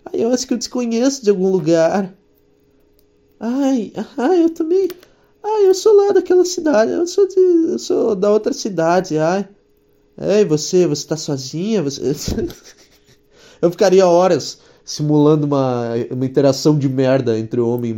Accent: Brazilian